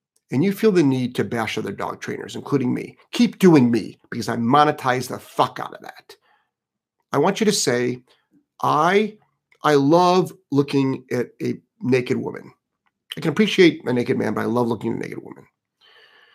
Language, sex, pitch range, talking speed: English, male, 115-170 Hz, 185 wpm